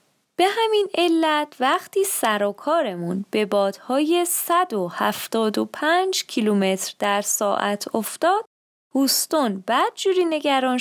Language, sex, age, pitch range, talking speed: Persian, female, 20-39, 205-325 Hz, 105 wpm